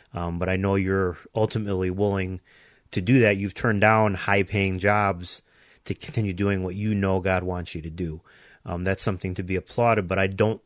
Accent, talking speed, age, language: American, 195 wpm, 30-49, English